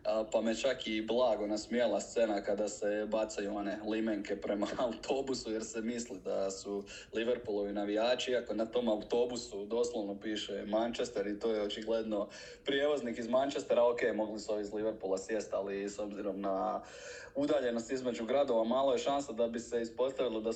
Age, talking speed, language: 20-39, 165 wpm, Croatian